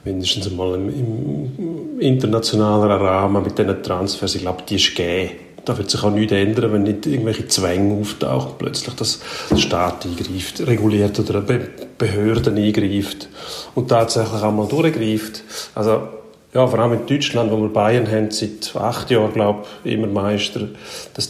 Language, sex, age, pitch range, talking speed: German, male, 40-59, 105-125 Hz, 160 wpm